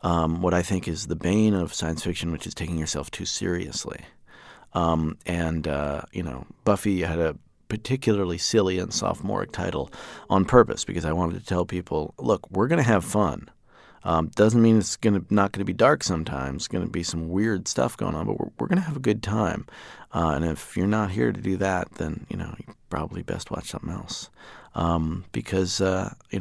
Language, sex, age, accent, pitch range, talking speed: English, male, 30-49, American, 80-95 Hz, 205 wpm